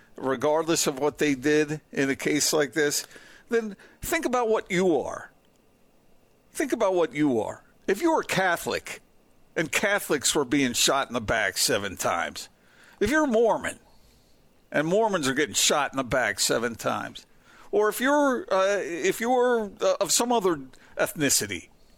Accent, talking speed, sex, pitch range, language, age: American, 160 wpm, male, 145-220 Hz, English, 50-69